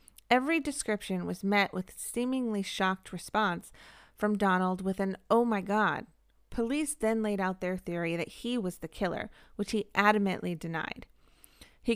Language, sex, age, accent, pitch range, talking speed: English, female, 30-49, American, 185-230 Hz, 155 wpm